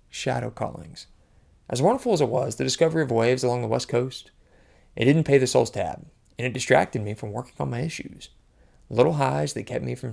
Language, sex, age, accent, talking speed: English, male, 20-39, American, 215 wpm